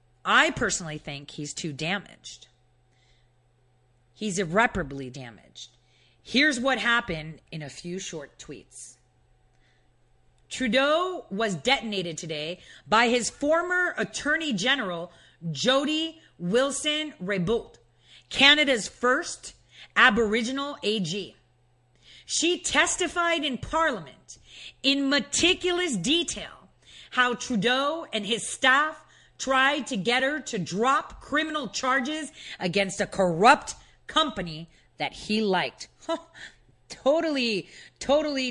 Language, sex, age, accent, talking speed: English, female, 40-59, American, 95 wpm